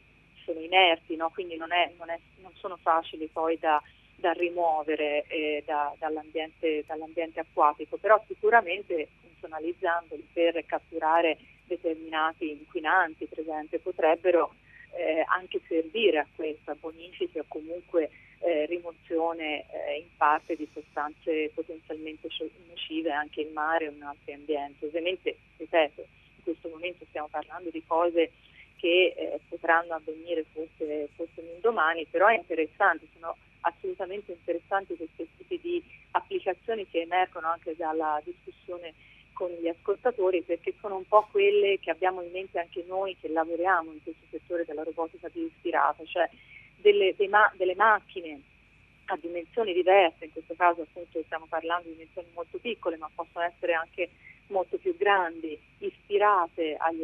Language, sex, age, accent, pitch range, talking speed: Italian, female, 30-49, native, 160-185 Hz, 145 wpm